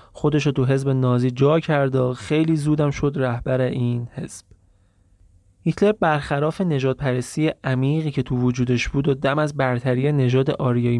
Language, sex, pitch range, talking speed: Persian, male, 125-150 Hz, 155 wpm